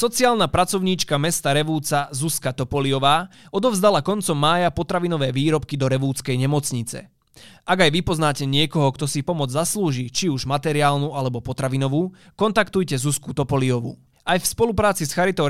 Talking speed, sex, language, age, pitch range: 135 wpm, male, Slovak, 20-39, 135-175 Hz